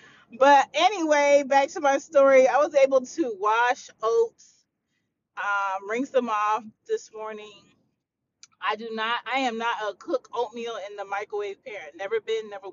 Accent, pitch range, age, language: American, 200-265 Hz, 30-49, English